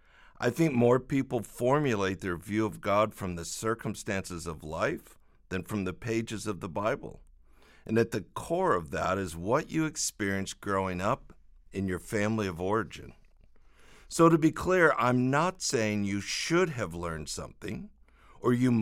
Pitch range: 90-130 Hz